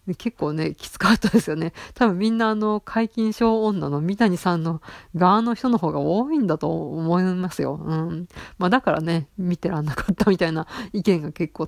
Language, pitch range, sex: Japanese, 155-190 Hz, female